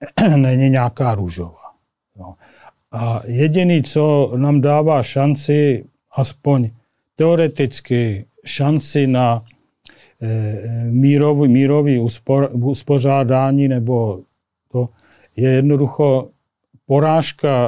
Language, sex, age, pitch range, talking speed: Slovak, male, 40-59, 120-150 Hz, 70 wpm